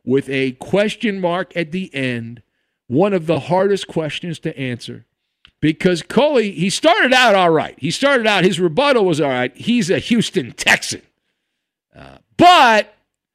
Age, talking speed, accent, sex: 50-69, 155 wpm, American, male